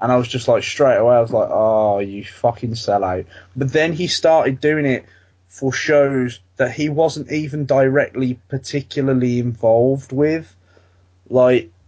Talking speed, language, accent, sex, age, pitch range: 160 wpm, English, British, male, 20-39, 95-130 Hz